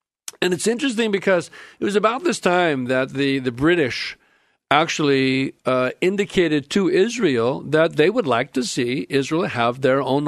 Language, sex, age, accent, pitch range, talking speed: English, male, 50-69, American, 130-165 Hz, 165 wpm